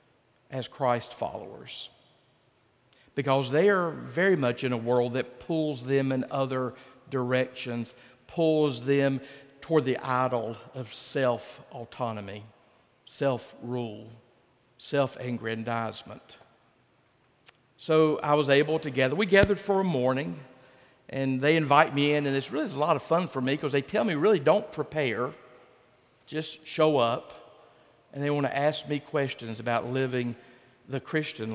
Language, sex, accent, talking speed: English, male, American, 140 wpm